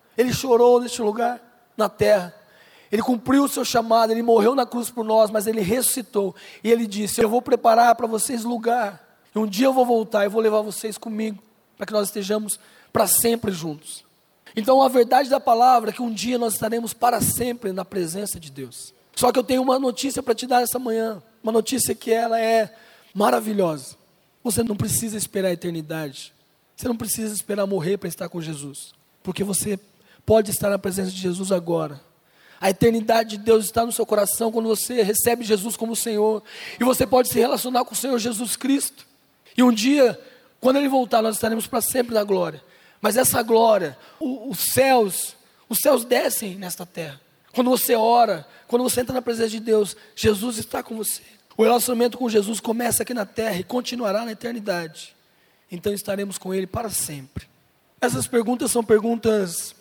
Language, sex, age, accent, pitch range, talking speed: Portuguese, male, 20-39, Brazilian, 200-240 Hz, 190 wpm